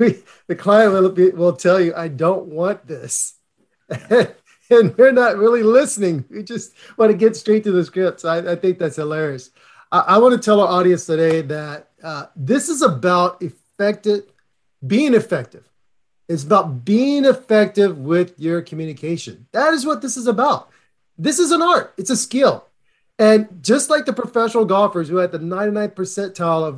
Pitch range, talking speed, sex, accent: 180-225 Hz, 180 wpm, male, American